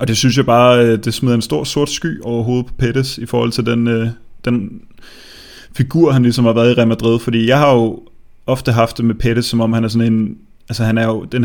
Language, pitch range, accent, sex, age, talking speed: Danish, 115-125 Hz, native, male, 20-39, 245 wpm